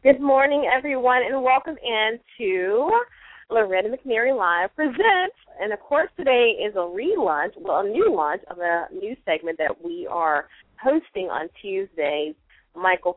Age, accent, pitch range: 20-39, American, 165-250 Hz